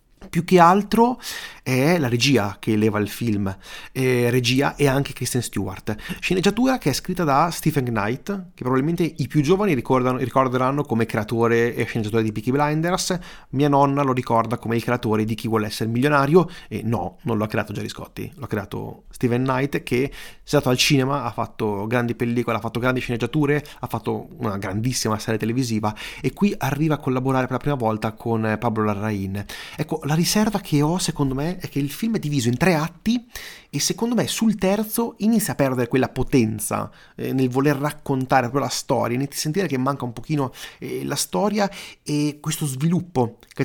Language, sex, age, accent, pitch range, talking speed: Italian, male, 30-49, native, 120-160 Hz, 190 wpm